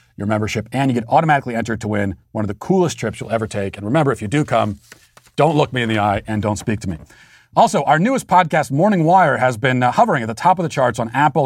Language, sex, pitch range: English, male, 110-140 Hz